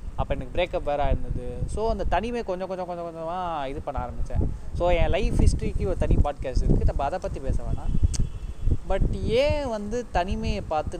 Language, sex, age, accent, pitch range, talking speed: Tamil, male, 20-39, native, 130-180 Hz, 180 wpm